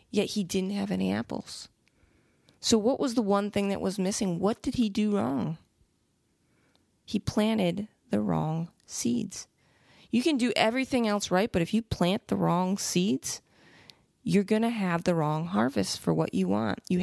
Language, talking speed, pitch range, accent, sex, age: English, 175 wpm, 170-210 Hz, American, female, 20-39